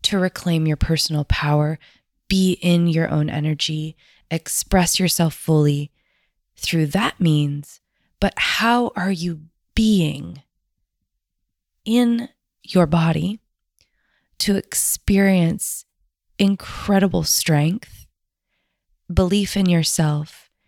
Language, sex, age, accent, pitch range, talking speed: English, female, 20-39, American, 155-195 Hz, 90 wpm